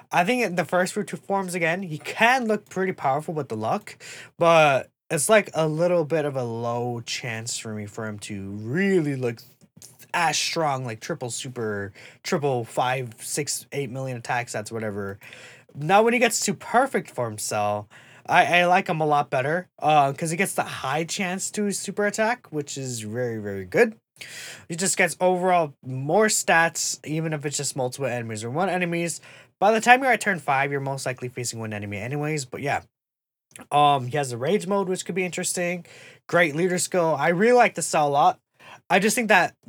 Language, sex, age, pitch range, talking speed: English, male, 20-39, 125-185 Hz, 200 wpm